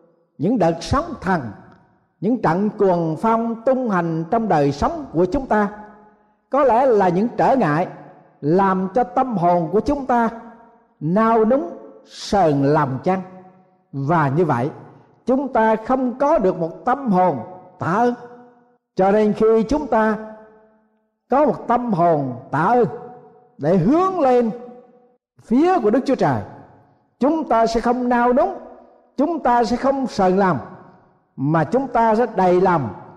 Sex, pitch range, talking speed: male, 180-245 Hz, 150 wpm